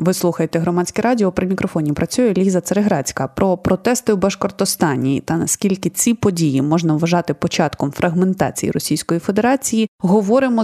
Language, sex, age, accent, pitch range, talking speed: Ukrainian, female, 20-39, native, 170-215 Hz, 135 wpm